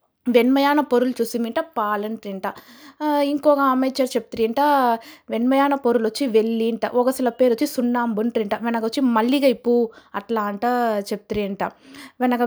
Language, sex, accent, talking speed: Telugu, female, native, 110 wpm